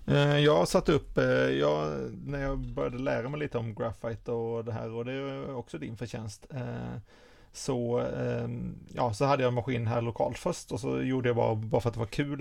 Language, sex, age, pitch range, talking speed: Swedish, male, 30-49, 110-125 Hz, 205 wpm